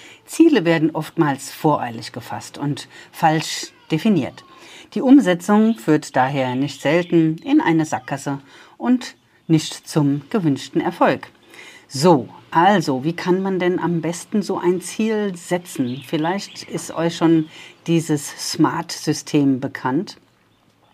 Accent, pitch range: German, 140-165 Hz